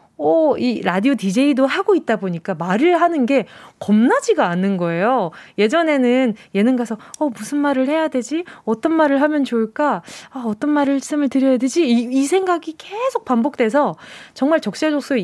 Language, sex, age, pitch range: Korean, female, 20-39, 200-290 Hz